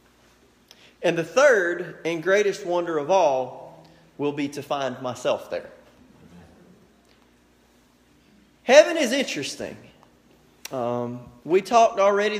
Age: 30-49